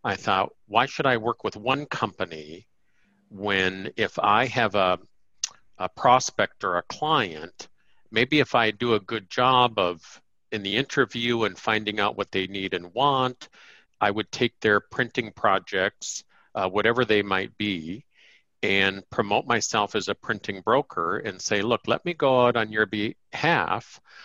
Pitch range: 95-120 Hz